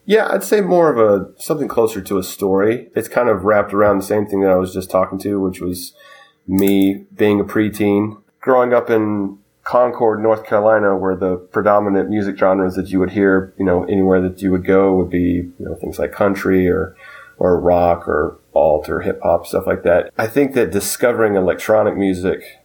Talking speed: 205 wpm